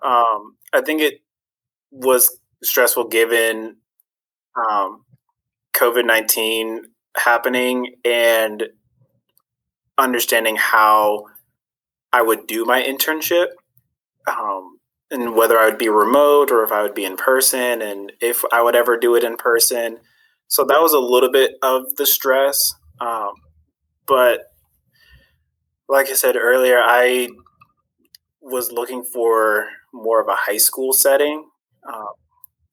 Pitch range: 110-130 Hz